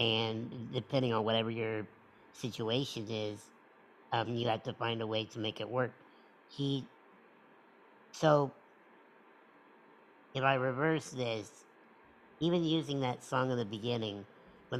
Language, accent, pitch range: English, American, 110-135 Hz